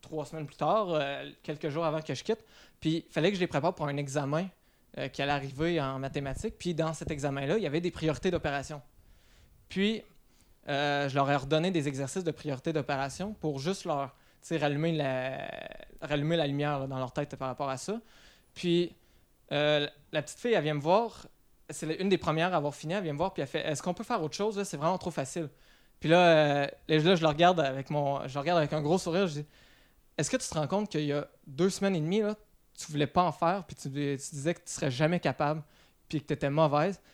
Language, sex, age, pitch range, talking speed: French, male, 20-39, 145-175 Hz, 240 wpm